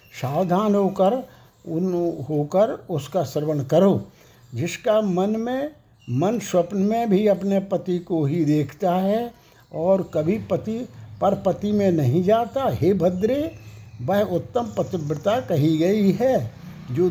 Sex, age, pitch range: male, 60-79, 155-205 Hz